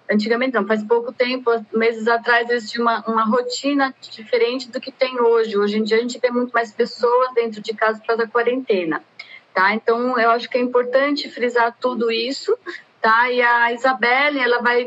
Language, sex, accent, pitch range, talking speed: Portuguese, female, Brazilian, 235-270 Hz, 200 wpm